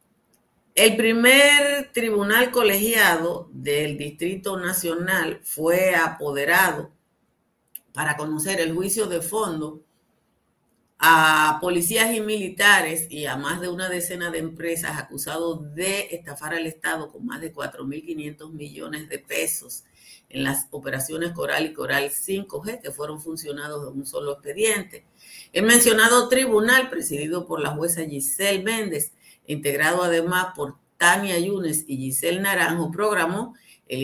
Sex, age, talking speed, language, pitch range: female, 50-69, 125 wpm, Spanish, 150-210 Hz